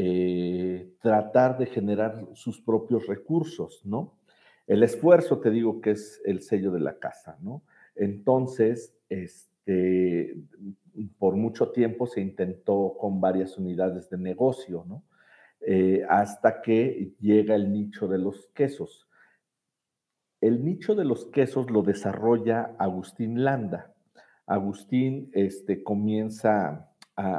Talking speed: 115 wpm